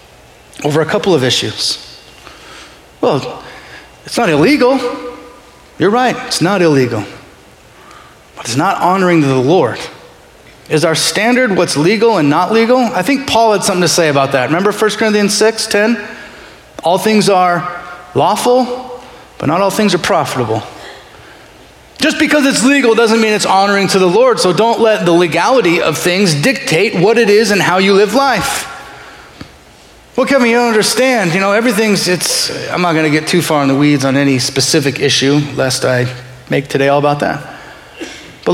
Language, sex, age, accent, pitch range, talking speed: English, male, 30-49, American, 155-220 Hz, 170 wpm